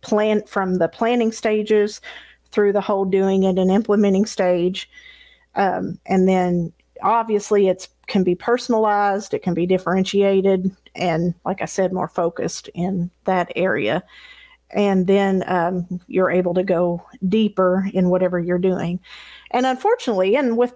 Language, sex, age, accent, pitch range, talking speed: English, female, 40-59, American, 185-215 Hz, 145 wpm